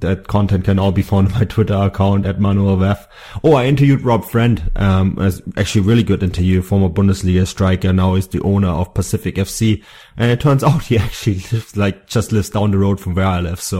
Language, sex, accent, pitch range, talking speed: English, male, German, 95-110 Hz, 220 wpm